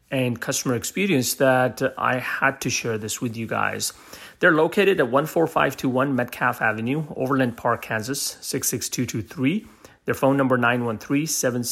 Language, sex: English, male